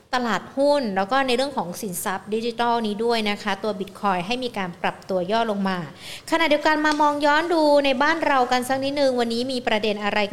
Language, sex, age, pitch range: Thai, female, 60-79, 205-260 Hz